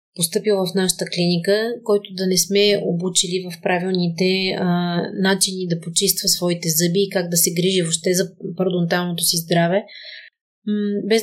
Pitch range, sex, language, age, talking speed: 170-200 Hz, female, Bulgarian, 30-49, 145 wpm